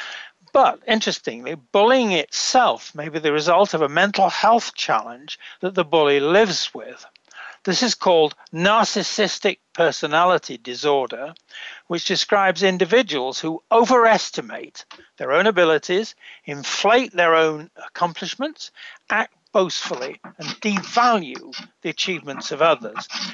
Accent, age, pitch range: British, 60-79, 155-215 Hz